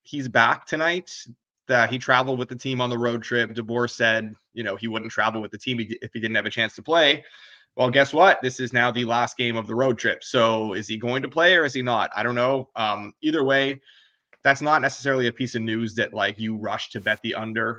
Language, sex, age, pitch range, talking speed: English, male, 20-39, 115-130 Hz, 255 wpm